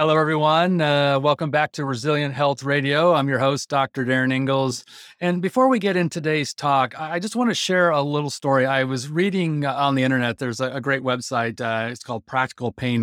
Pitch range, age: 130-155 Hz, 30-49